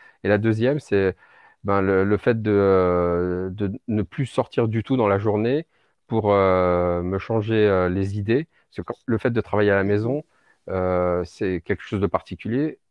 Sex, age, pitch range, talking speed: male, 40-59, 95-110 Hz, 180 wpm